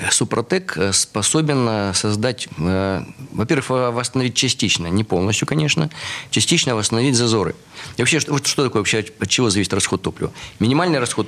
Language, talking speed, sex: Russian, 135 wpm, male